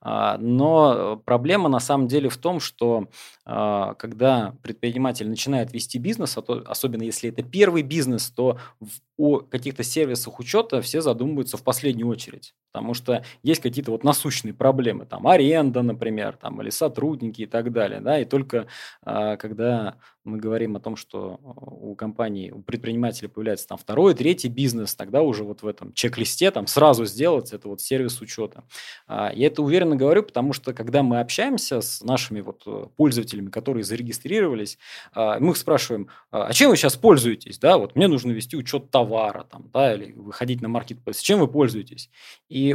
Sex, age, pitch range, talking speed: male, 20-39, 115-145 Hz, 155 wpm